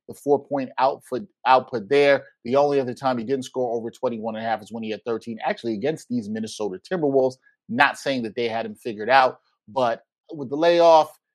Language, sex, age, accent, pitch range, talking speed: English, male, 30-49, American, 120-160 Hz, 205 wpm